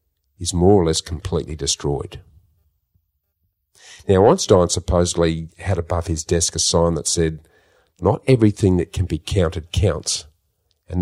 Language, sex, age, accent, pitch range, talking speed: English, male, 50-69, Australian, 80-95 Hz, 135 wpm